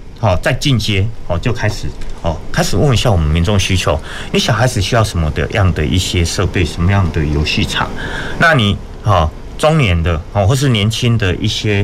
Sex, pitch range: male, 85-115 Hz